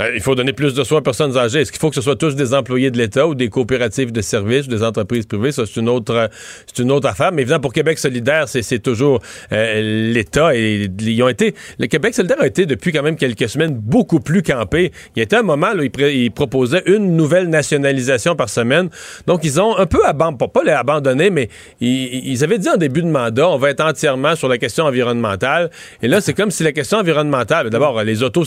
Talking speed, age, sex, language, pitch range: 240 wpm, 40-59, male, French, 125-165 Hz